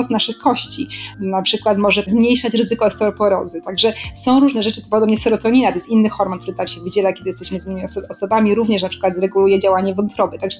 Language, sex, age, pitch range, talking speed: Polish, female, 30-49, 195-225 Hz, 200 wpm